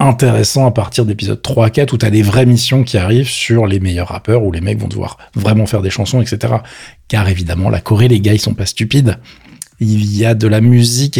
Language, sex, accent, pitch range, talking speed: French, male, French, 105-140 Hz, 230 wpm